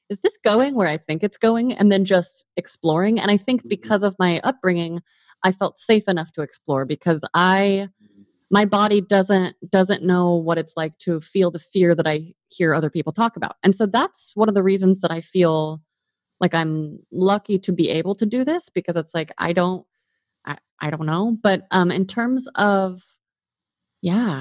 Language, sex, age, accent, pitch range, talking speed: English, female, 30-49, American, 160-195 Hz, 195 wpm